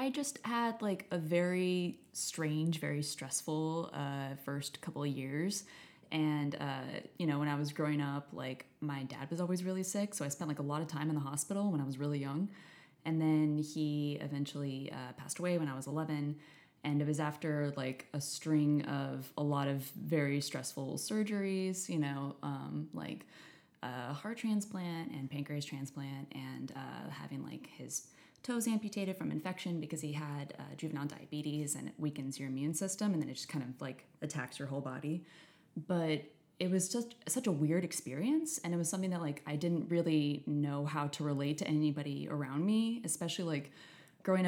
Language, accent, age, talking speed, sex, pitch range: English, American, 20-39, 190 wpm, female, 145-170 Hz